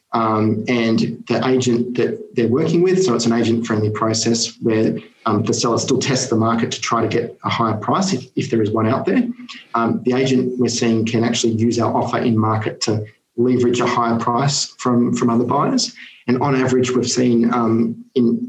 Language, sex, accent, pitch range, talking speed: English, male, Australian, 110-125 Hz, 205 wpm